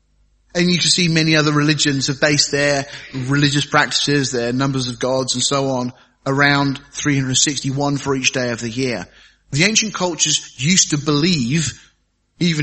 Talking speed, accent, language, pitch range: 160 wpm, British, English, 130-160 Hz